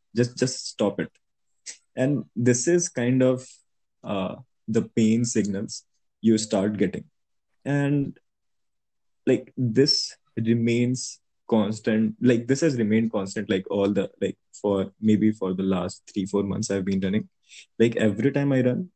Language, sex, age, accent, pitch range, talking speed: Hindi, male, 20-39, native, 100-125 Hz, 145 wpm